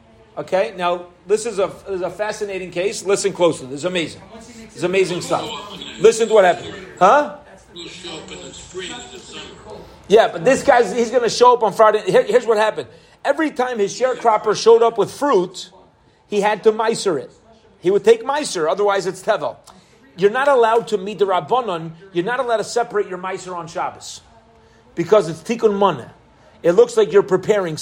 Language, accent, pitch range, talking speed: English, American, 185-260 Hz, 180 wpm